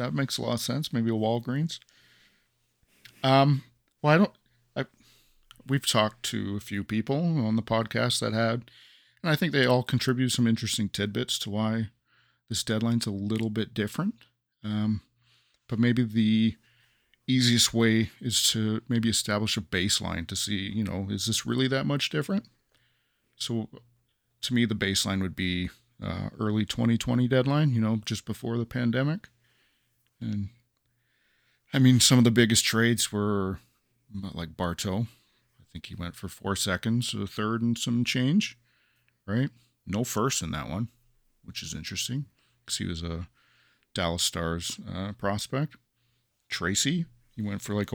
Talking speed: 160 wpm